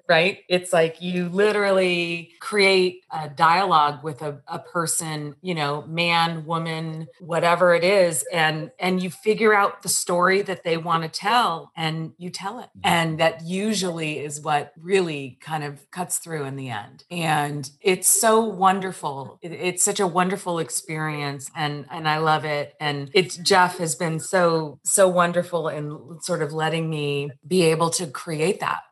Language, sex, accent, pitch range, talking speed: English, female, American, 155-190 Hz, 170 wpm